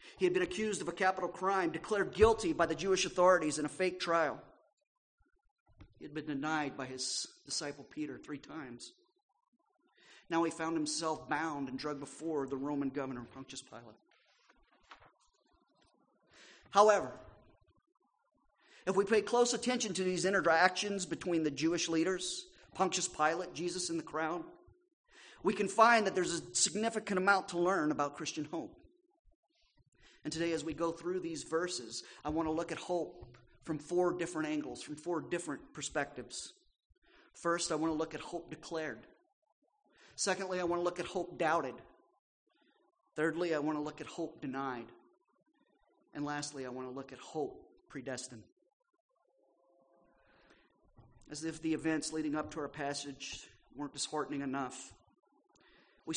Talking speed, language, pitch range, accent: 150 wpm, English, 150-190 Hz, American